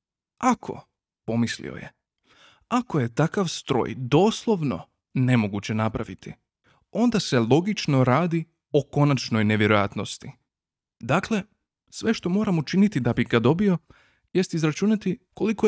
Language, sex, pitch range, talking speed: Croatian, male, 110-150 Hz, 110 wpm